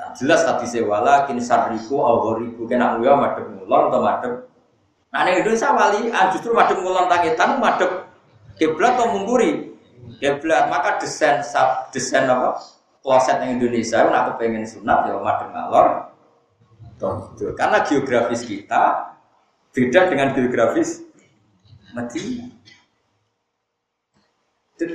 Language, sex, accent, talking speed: Indonesian, male, native, 125 wpm